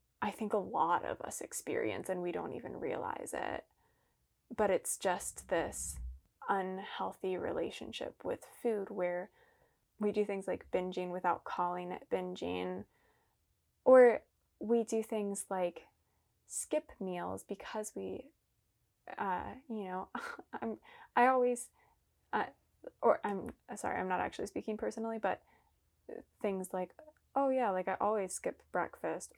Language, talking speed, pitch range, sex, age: English, 135 wpm, 185-230 Hz, female, 20-39